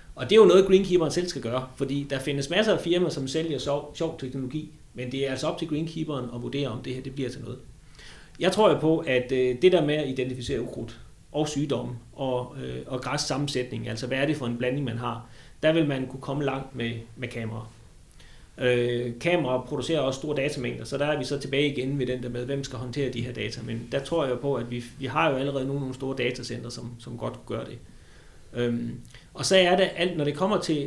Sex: male